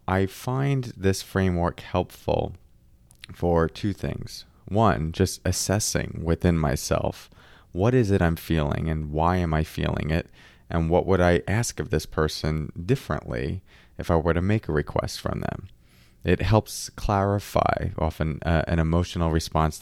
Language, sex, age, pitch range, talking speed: English, male, 30-49, 75-95 Hz, 150 wpm